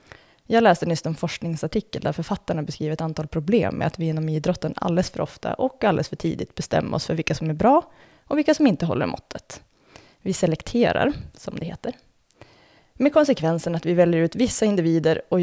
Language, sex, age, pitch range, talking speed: Swedish, female, 20-39, 160-220 Hz, 195 wpm